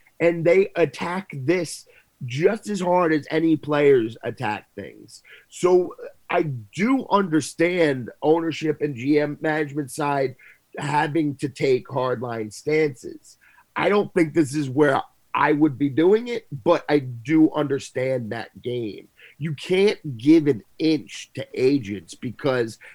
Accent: American